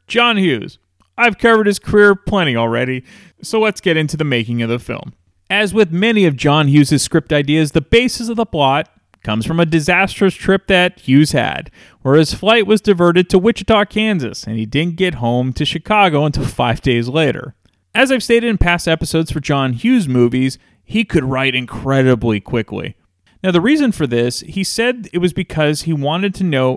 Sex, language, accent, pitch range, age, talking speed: male, English, American, 125-195 Hz, 30-49, 195 wpm